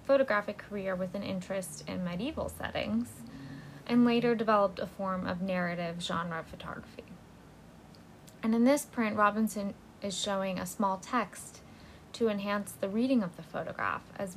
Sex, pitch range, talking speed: female, 180-220 Hz, 145 wpm